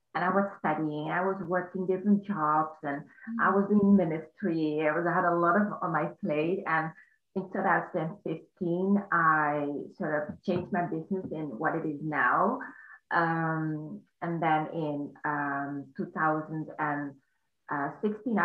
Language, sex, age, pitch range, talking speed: English, female, 30-49, 155-185 Hz, 135 wpm